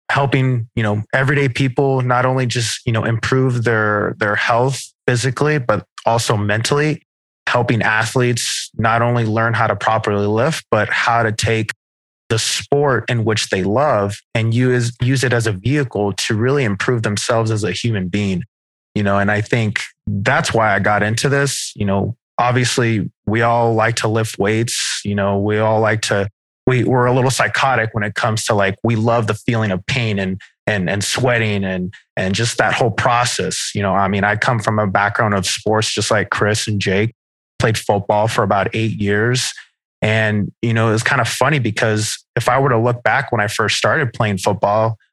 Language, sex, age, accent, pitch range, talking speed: English, male, 20-39, American, 105-125 Hz, 195 wpm